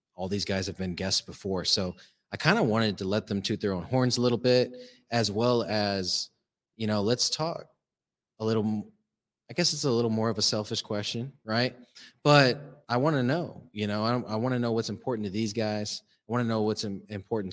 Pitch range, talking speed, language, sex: 100-115 Hz, 220 wpm, English, male